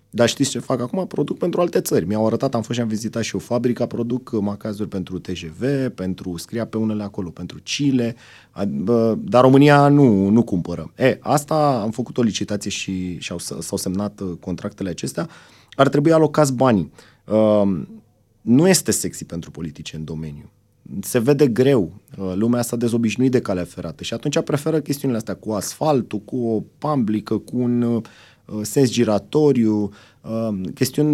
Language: Romanian